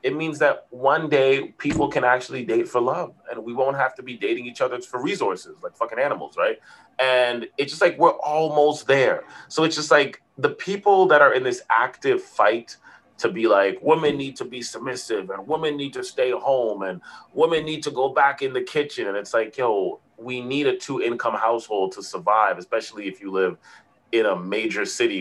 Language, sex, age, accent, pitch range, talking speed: English, male, 30-49, American, 115-160 Hz, 210 wpm